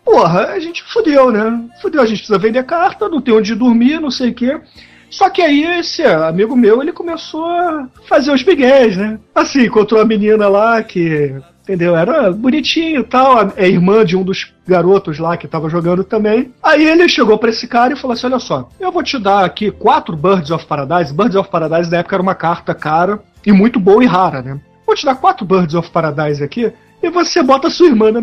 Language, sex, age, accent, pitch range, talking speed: Portuguese, male, 40-59, Brazilian, 180-275 Hz, 220 wpm